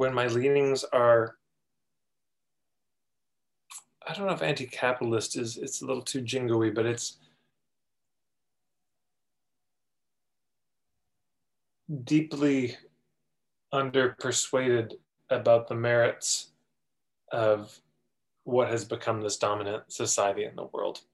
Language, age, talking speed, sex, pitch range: English, 30-49, 95 wpm, male, 110-135 Hz